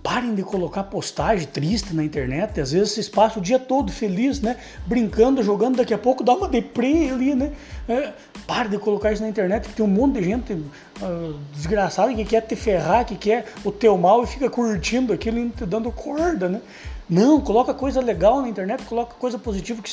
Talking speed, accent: 210 wpm, Brazilian